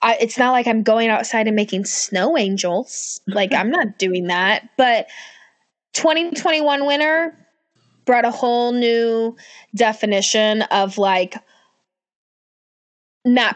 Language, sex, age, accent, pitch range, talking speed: English, female, 10-29, American, 210-275 Hz, 115 wpm